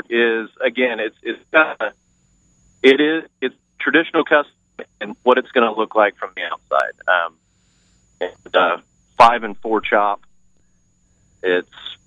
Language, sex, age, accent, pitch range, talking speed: English, male, 30-49, American, 90-115 Hz, 145 wpm